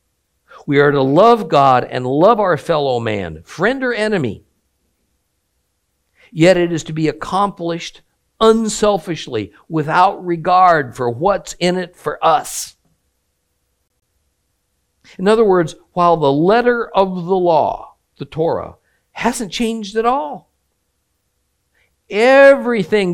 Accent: American